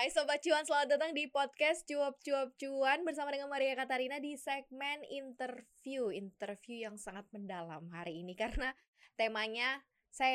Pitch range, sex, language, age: 220-295 Hz, female, Indonesian, 20-39